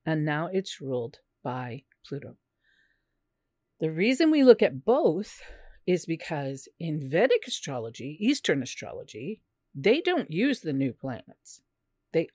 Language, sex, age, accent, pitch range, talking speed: English, female, 50-69, American, 150-215 Hz, 125 wpm